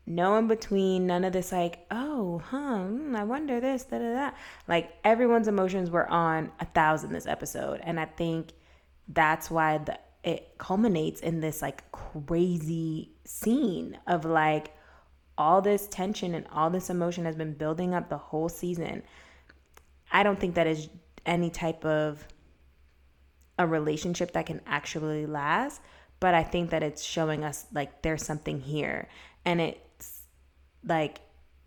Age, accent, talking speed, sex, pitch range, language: 20-39, American, 150 wpm, female, 150-175 Hz, English